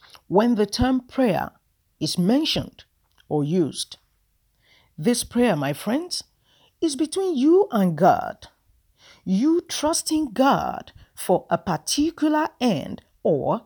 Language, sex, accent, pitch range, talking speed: English, female, Nigerian, 175-270 Hz, 110 wpm